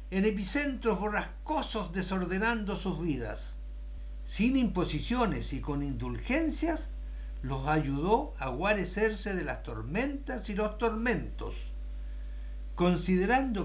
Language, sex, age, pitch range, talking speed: Polish, male, 60-79, 135-205 Hz, 95 wpm